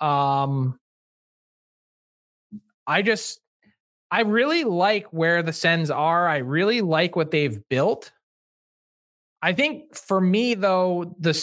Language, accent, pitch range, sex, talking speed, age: English, American, 150-195 Hz, male, 115 wpm, 20-39